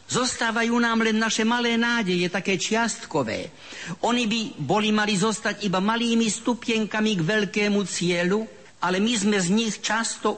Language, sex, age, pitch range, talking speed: Slovak, male, 50-69, 160-210 Hz, 145 wpm